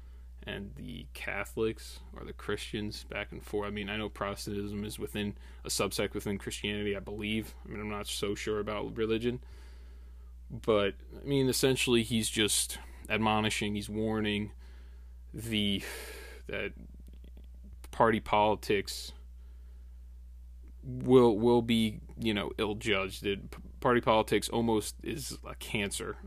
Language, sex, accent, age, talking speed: English, male, American, 20-39, 130 wpm